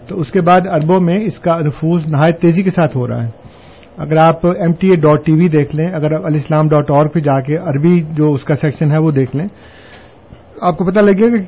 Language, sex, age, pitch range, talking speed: Urdu, male, 50-69, 150-185 Hz, 255 wpm